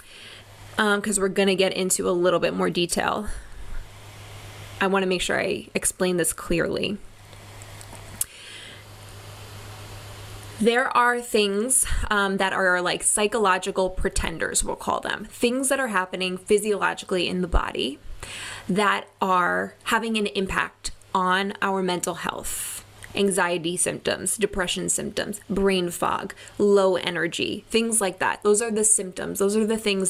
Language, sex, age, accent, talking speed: English, female, 20-39, American, 140 wpm